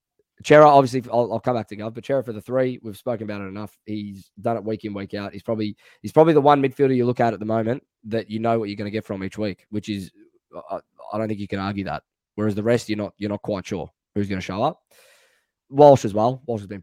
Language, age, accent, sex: English, 10-29, Australian, male